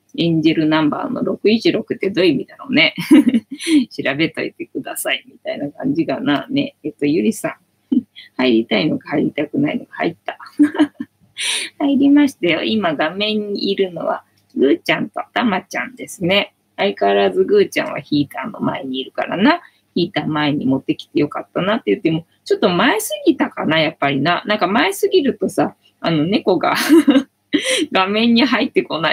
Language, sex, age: Japanese, female, 20-39